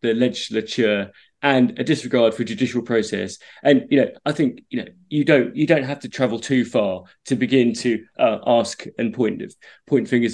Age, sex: 20-39, male